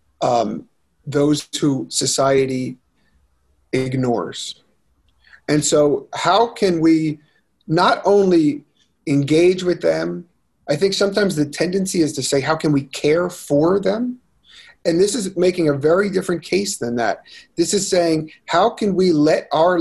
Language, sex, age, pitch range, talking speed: English, male, 40-59, 135-175 Hz, 140 wpm